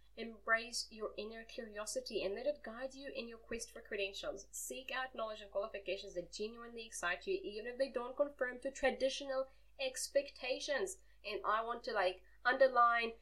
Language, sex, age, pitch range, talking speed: English, female, 20-39, 190-255 Hz, 170 wpm